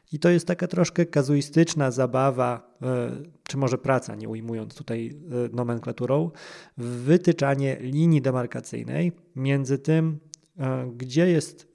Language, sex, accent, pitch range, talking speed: Polish, male, native, 125-155 Hz, 105 wpm